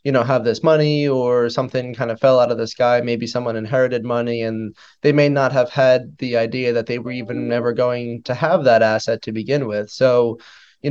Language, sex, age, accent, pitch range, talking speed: English, male, 20-39, American, 115-135 Hz, 225 wpm